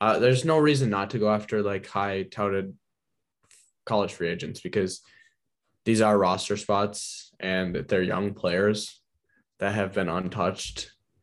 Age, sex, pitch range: 10-29, male, 95-105 Hz